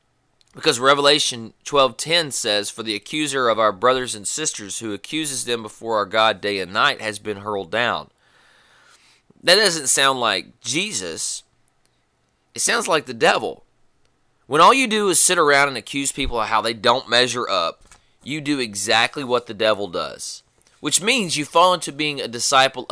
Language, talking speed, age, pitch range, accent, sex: English, 175 wpm, 30-49, 105-150 Hz, American, male